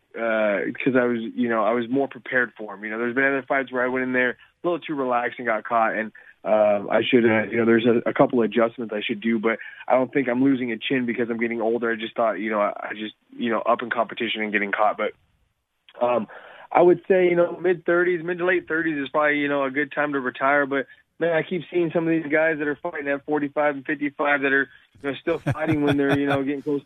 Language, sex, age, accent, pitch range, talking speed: English, male, 20-39, American, 125-155 Hz, 275 wpm